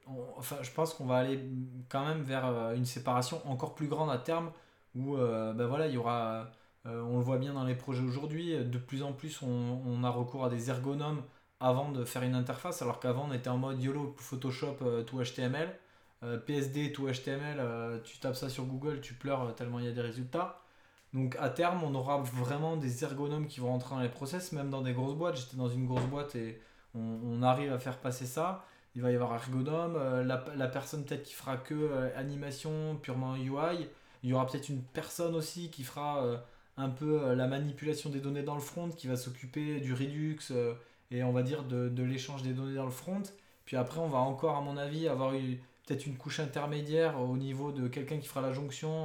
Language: French